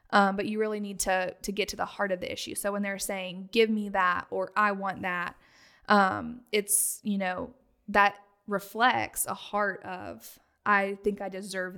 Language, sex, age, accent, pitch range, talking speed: English, female, 10-29, American, 195-225 Hz, 195 wpm